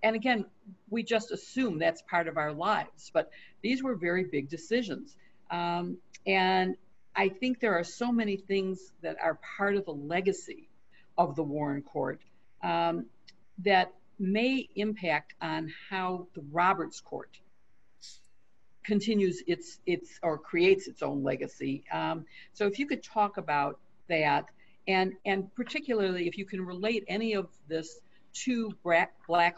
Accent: American